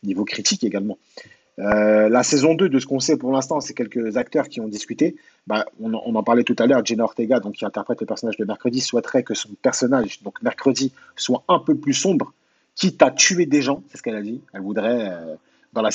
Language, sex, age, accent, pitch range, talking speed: French, male, 30-49, French, 105-145 Hz, 235 wpm